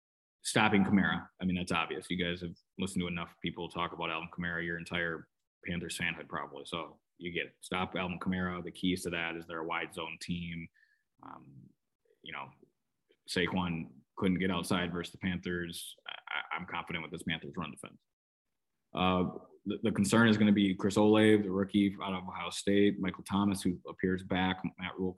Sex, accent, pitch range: male, American, 90-95 Hz